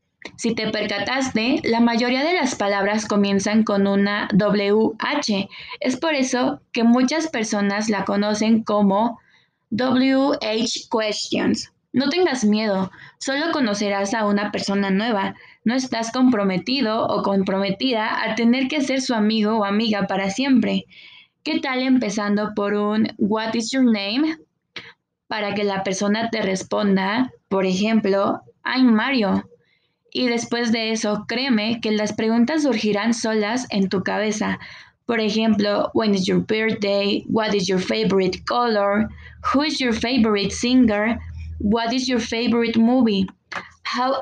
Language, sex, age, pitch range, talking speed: Spanish, female, 20-39, 205-245 Hz, 135 wpm